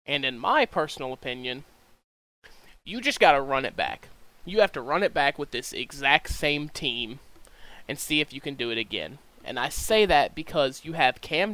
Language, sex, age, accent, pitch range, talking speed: English, male, 20-39, American, 130-170 Hz, 205 wpm